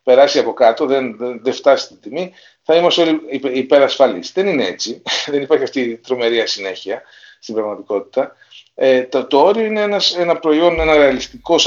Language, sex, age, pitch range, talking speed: Greek, male, 40-59, 130-190 Hz, 175 wpm